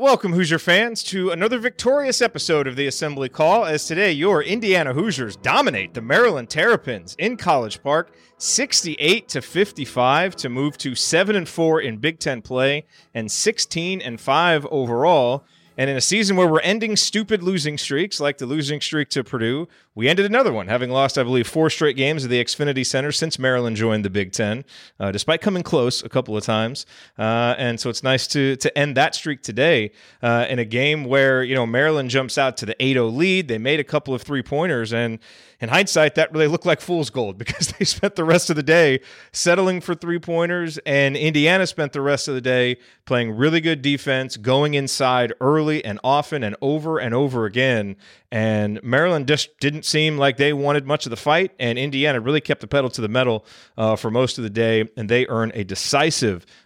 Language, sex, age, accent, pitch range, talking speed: English, male, 30-49, American, 125-160 Hz, 200 wpm